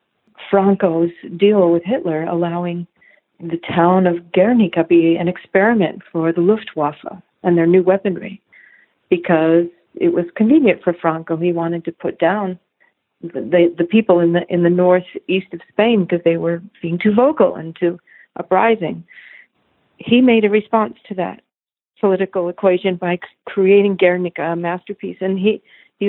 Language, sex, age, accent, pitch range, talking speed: English, female, 50-69, American, 175-215 Hz, 150 wpm